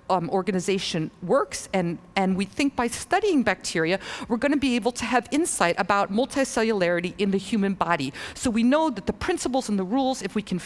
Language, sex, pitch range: English, female, 190-255 Hz